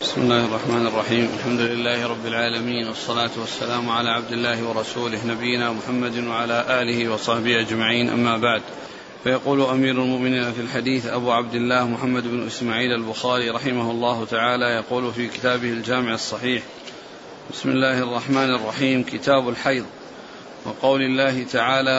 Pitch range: 120-135 Hz